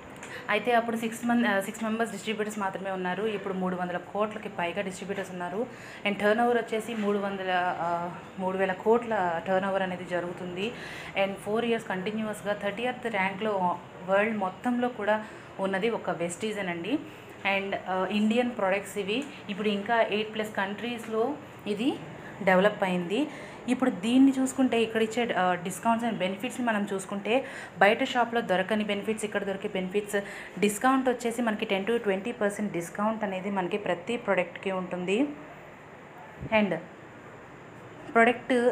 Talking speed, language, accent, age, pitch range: 125 wpm, Telugu, native, 30-49, 190-225 Hz